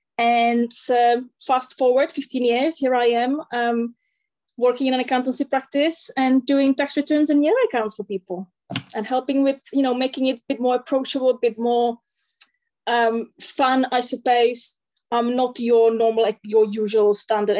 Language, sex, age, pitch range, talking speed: English, female, 20-39, 215-260 Hz, 170 wpm